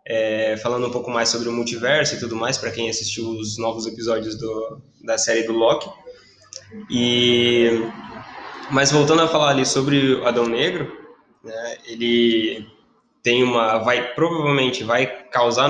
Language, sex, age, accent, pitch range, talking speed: Portuguese, male, 10-29, Brazilian, 115-150 Hz, 150 wpm